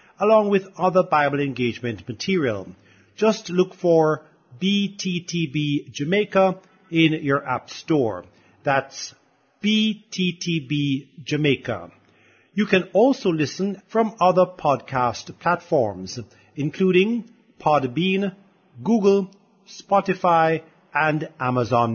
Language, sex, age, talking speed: English, male, 50-69, 85 wpm